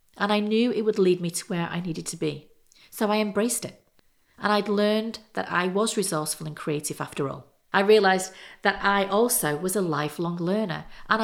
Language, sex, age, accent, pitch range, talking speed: English, female, 40-59, British, 170-215 Hz, 205 wpm